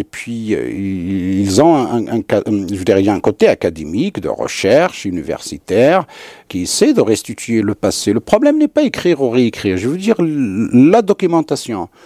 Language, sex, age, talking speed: French, male, 50-69, 145 wpm